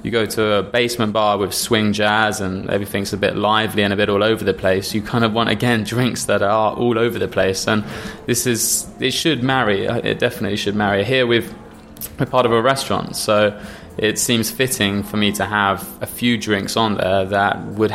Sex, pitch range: male, 100-120 Hz